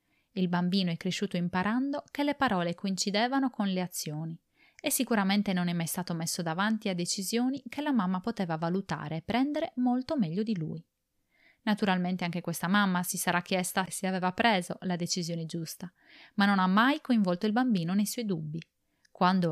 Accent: native